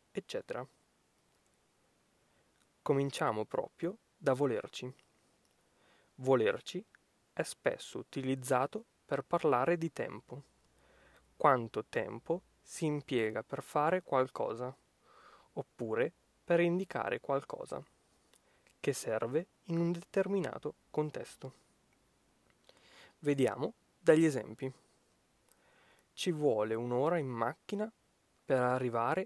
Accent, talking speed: native, 80 wpm